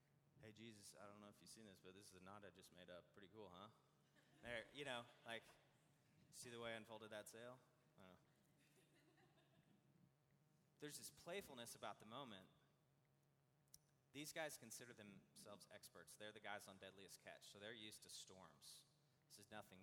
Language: English